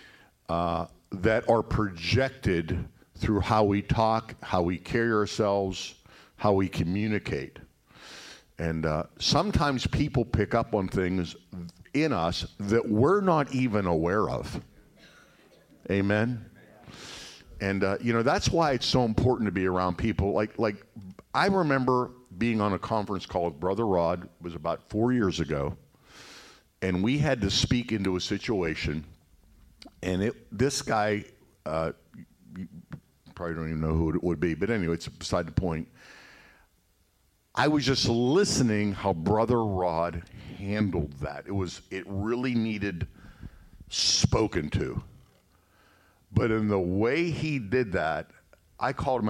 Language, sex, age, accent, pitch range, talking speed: English, male, 50-69, American, 85-115 Hz, 140 wpm